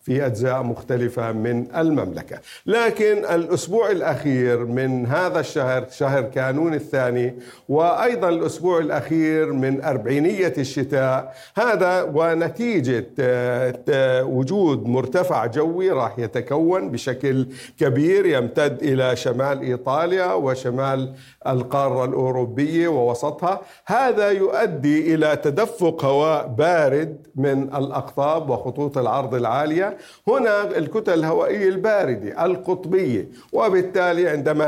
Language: Arabic